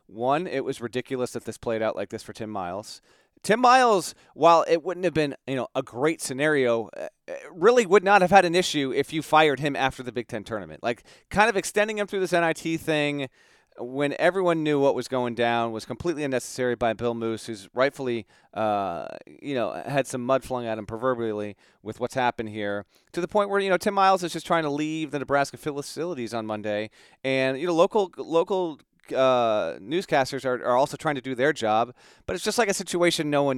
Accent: American